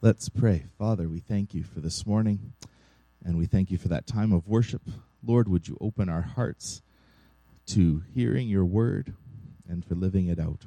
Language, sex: English, male